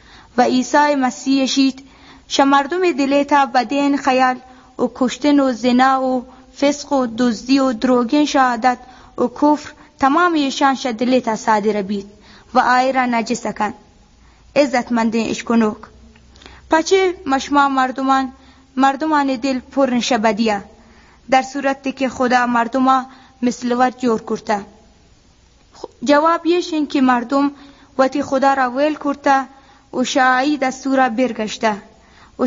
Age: 20-39